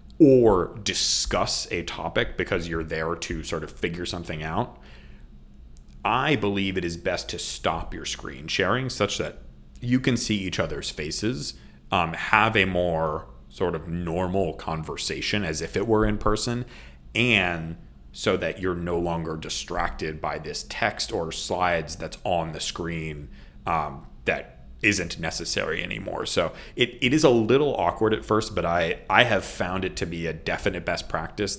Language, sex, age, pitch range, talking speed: English, male, 30-49, 80-100 Hz, 165 wpm